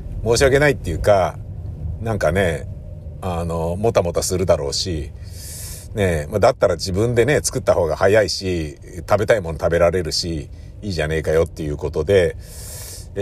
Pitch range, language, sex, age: 90-125 Hz, Japanese, male, 50-69